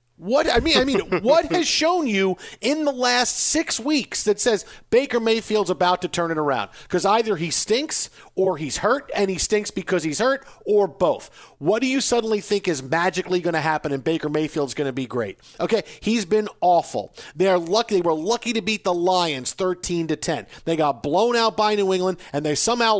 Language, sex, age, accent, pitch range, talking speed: English, male, 40-59, American, 165-220 Hz, 215 wpm